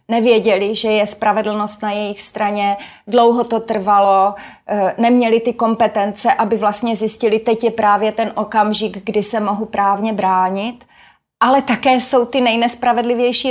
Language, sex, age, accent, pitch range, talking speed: Czech, female, 30-49, native, 195-230 Hz, 140 wpm